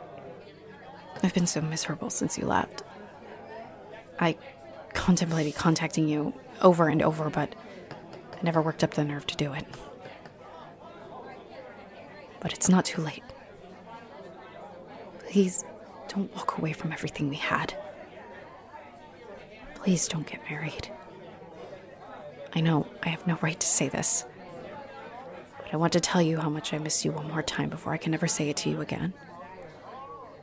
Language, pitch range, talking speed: English, 155-180 Hz, 145 wpm